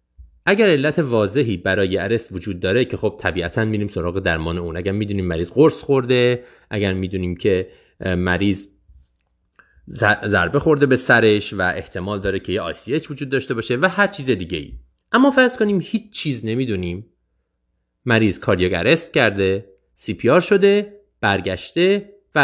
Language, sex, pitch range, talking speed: Persian, male, 95-145 Hz, 150 wpm